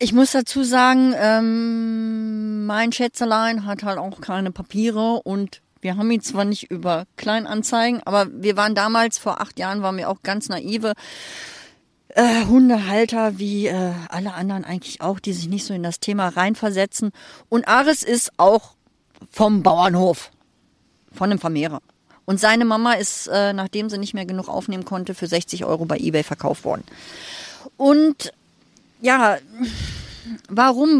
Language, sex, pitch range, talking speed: German, female, 200-260 Hz, 155 wpm